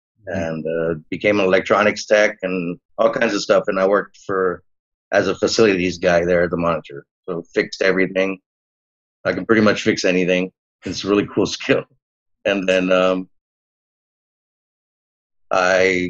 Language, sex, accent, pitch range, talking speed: English, male, American, 90-100 Hz, 155 wpm